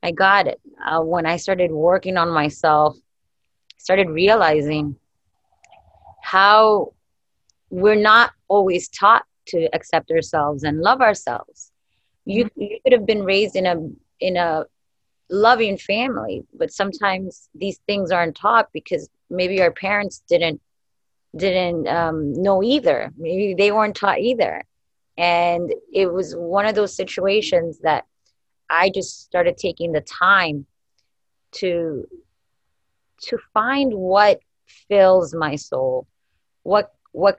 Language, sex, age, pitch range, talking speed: English, female, 20-39, 165-205 Hz, 125 wpm